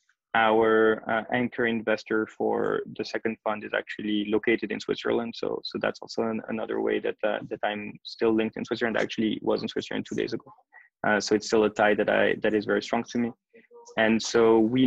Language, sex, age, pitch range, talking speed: English, male, 20-39, 105-115 Hz, 215 wpm